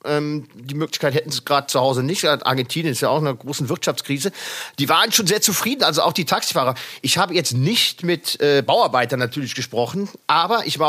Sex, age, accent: male, 40-59, German